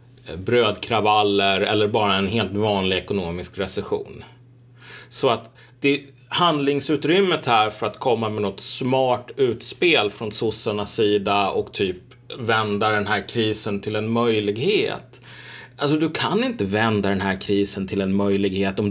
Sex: male